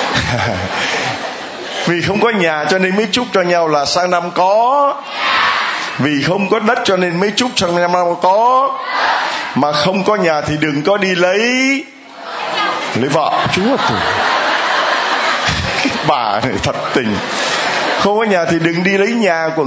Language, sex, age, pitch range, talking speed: Vietnamese, male, 20-39, 165-215 Hz, 155 wpm